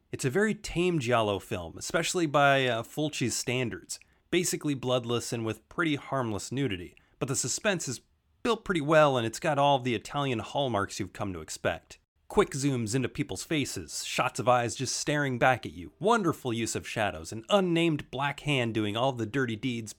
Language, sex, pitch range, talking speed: English, male, 115-155 Hz, 185 wpm